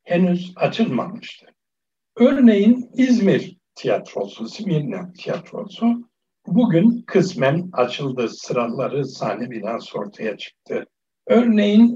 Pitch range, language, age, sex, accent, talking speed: 160-220 Hz, Turkish, 60-79, male, native, 80 wpm